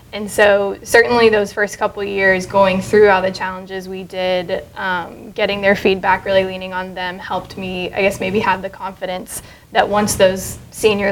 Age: 10-29